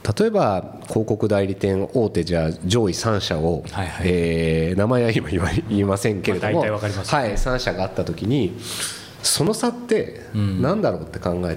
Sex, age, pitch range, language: male, 40-59, 95-150 Hz, Japanese